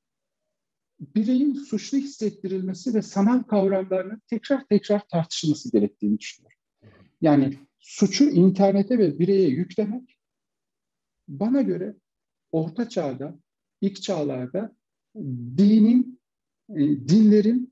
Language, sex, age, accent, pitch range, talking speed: Turkish, male, 60-79, native, 150-215 Hz, 90 wpm